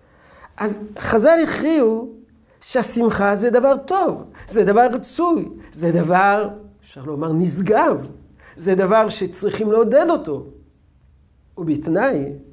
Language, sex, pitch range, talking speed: Hebrew, male, 150-215 Hz, 100 wpm